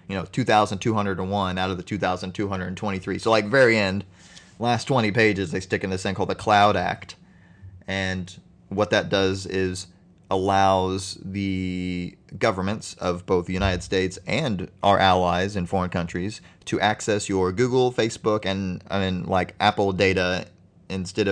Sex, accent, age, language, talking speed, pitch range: male, American, 30-49, English, 150 wpm, 95-105 Hz